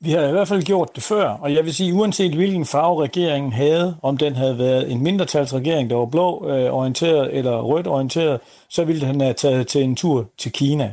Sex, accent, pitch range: male, native, 130-165 Hz